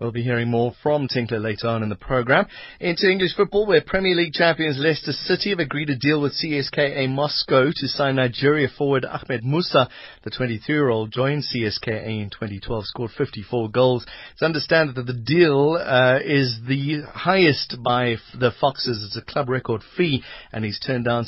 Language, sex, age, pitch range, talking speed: English, male, 30-49, 110-150 Hz, 180 wpm